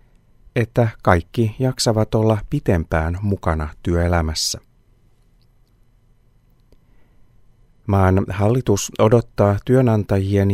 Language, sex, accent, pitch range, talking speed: Finnish, male, native, 95-120 Hz, 65 wpm